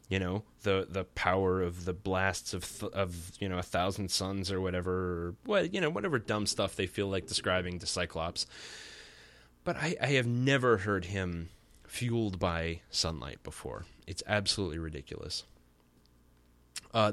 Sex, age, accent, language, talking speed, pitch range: male, 20-39, American, English, 160 wpm, 85-110 Hz